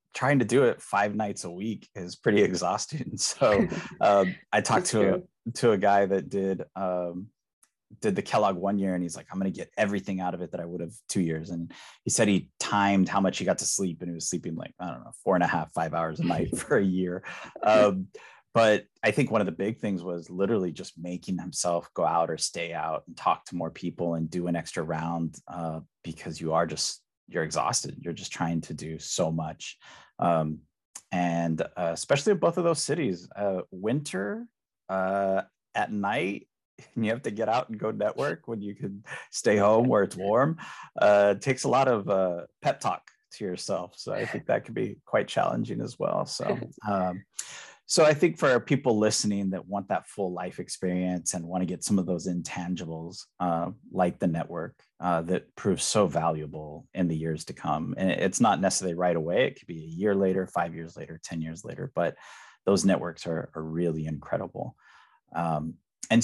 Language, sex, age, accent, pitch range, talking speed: English, male, 30-49, American, 85-100 Hz, 210 wpm